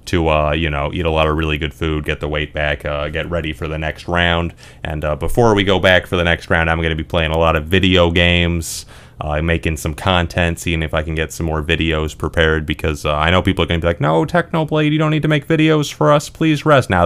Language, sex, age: English, male, 30-49